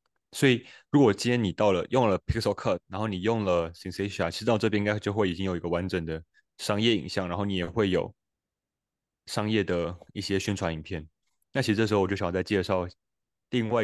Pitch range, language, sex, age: 90-110 Hz, Chinese, male, 20-39